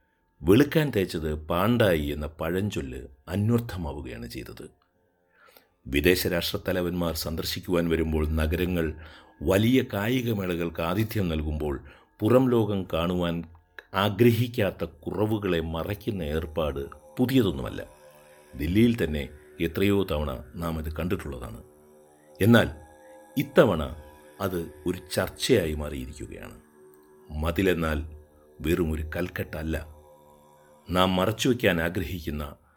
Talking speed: 75 wpm